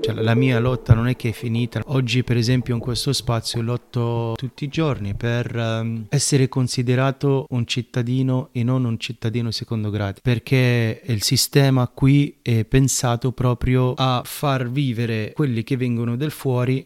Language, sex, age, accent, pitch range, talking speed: Italian, male, 30-49, native, 110-130 Hz, 155 wpm